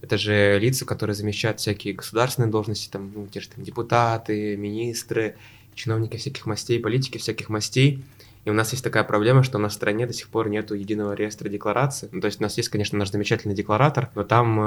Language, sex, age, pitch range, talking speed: Russian, male, 20-39, 100-115 Hz, 210 wpm